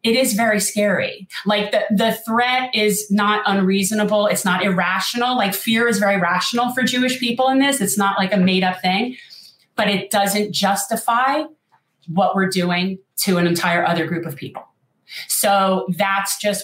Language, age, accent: English, 30-49, American